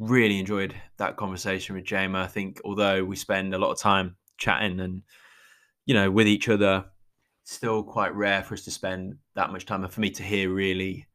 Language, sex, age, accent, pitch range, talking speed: English, male, 10-29, British, 95-105 Hz, 205 wpm